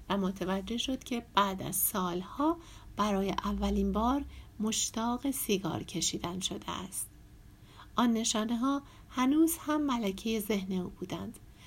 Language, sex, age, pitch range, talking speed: Persian, female, 60-79, 195-255 Hz, 125 wpm